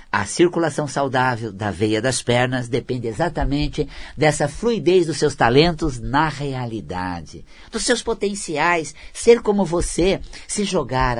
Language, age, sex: Portuguese, 50-69, male